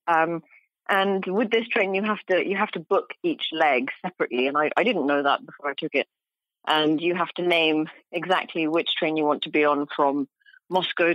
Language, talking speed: English, 215 wpm